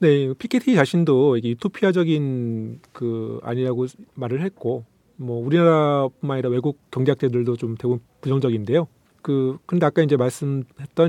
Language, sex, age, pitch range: Korean, male, 40-59, 125-165 Hz